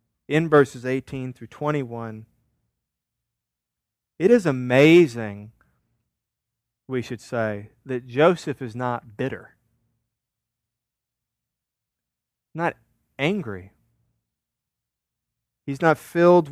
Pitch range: 120-155 Hz